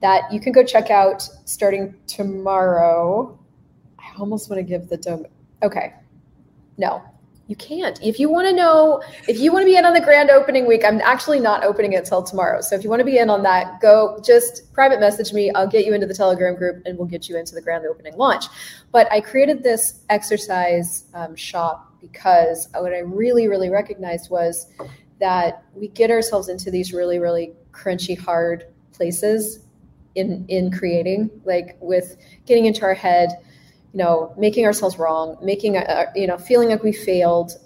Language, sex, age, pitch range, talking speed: English, female, 20-39, 170-210 Hz, 180 wpm